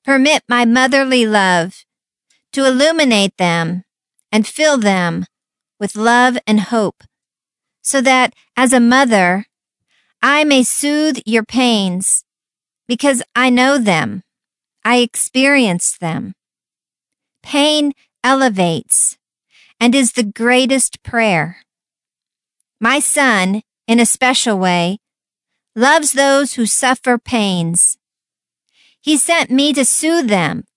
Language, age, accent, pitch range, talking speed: English, 50-69, American, 205-270 Hz, 105 wpm